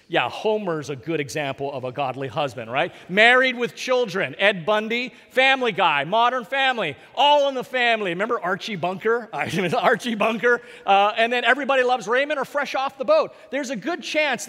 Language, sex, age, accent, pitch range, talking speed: English, male, 40-59, American, 165-250 Hz, 180 wpm